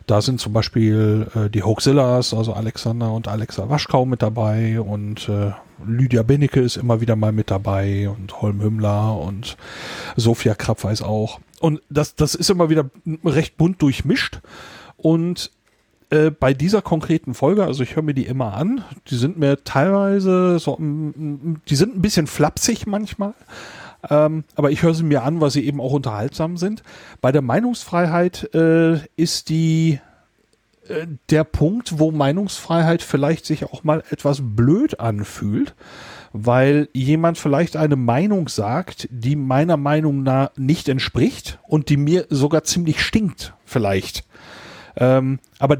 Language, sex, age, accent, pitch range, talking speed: German, male, 40-59, German, 115-160 Hz, 150 wpm